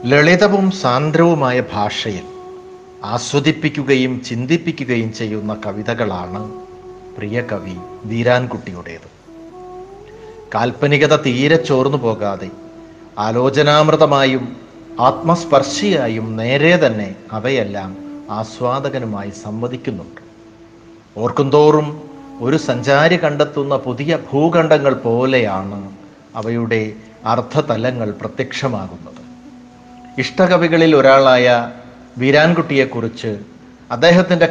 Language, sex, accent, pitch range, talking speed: Malayalam, male, native, 110-150 Hz, 60 wpm